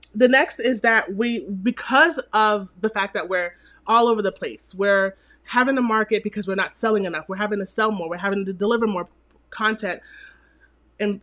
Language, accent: English, American